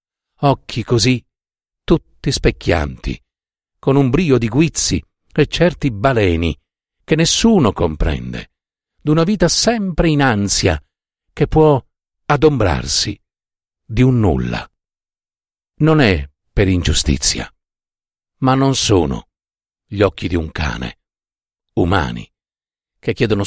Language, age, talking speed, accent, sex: Italian, 50-69, 105 wpm, native, male